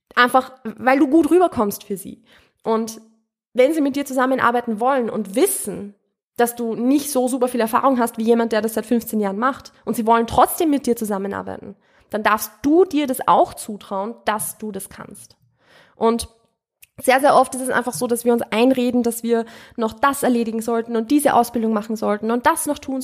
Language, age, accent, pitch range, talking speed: German, 20-39, German, 225-280 Hz, 200 wpm